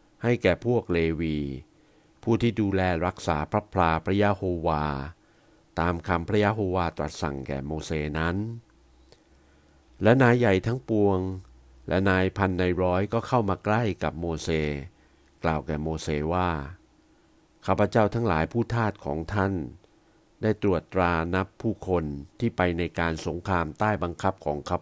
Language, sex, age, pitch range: Thai, male, 60-79, 80-105 Hz